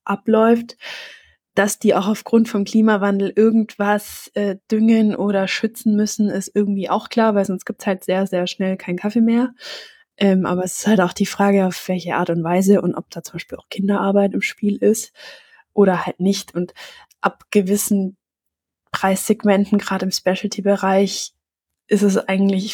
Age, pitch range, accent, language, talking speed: 20-39, 185-210 Hz, German, German, 170 wpm